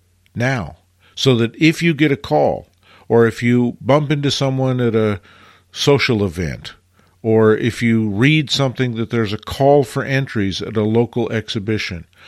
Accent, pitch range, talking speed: American, 100-135 Hz, 160 wpm